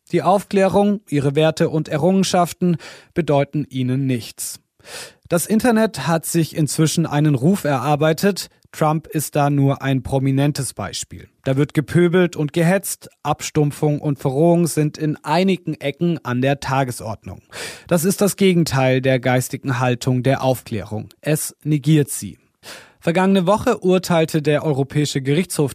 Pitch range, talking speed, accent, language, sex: 140-175 Hz, 135 wpm, German, German, male